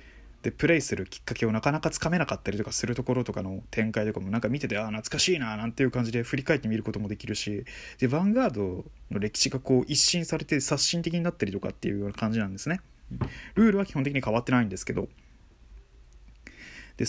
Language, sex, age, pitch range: Japanese, male, 20-39, 100-135 Hz